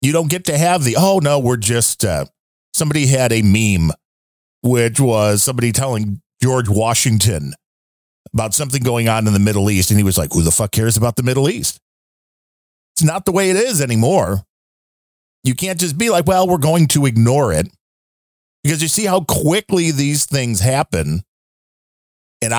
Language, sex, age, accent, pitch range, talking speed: English, male, 40-59, American, 110-170 Hz, 180 wpm